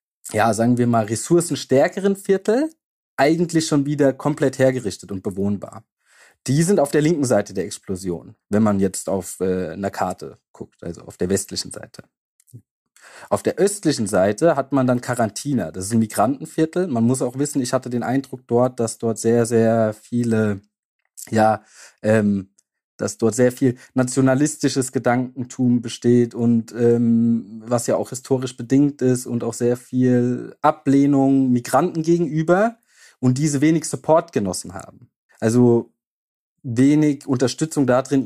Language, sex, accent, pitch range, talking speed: German, male, German, 115-150 Hz, 145 wpm